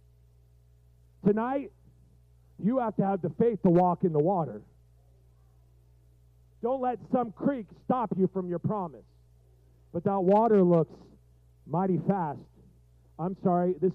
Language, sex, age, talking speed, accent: English, male, 40-59, 130 wpm, American